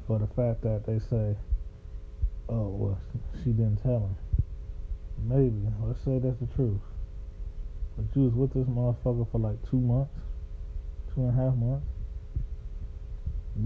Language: English